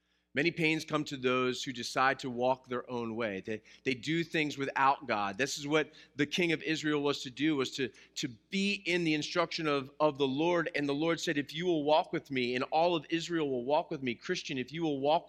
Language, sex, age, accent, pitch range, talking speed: English, male, 30-49, American, 125-170 Hz, 245 wpm